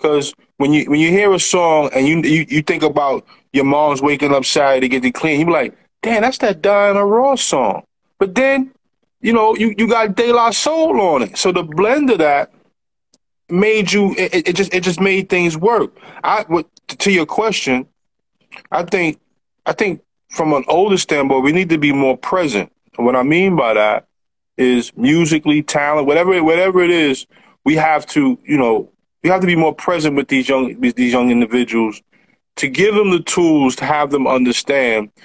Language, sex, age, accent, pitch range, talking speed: English, male, 20-39, American, 130-190 Hz, 200 wpm